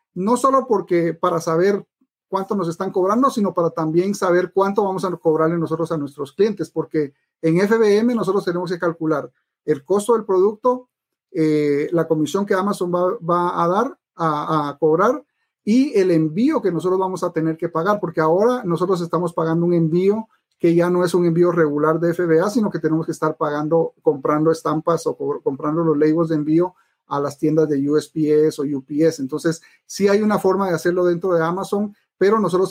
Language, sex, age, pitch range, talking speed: Spanish, male, 40-59, 160-200 Hz, 190 wpm